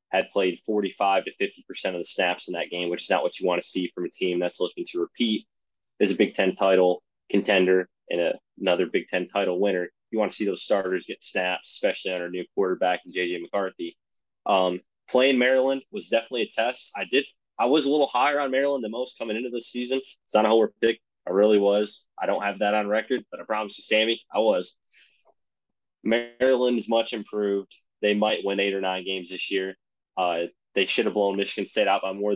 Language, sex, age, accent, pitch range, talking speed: English, male, 20-39, American, 95-110 Hz, 225 wpm